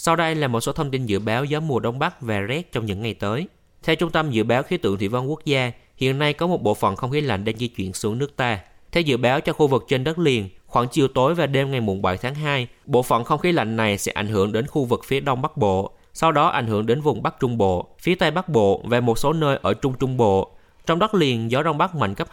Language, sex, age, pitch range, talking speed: Vietnamese, male, 20-39, 110-155 Hz, 290 wpm